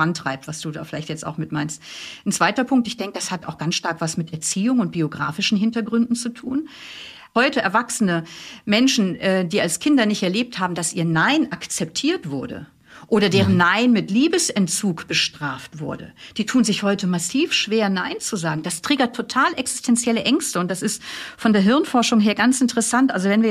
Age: 50-69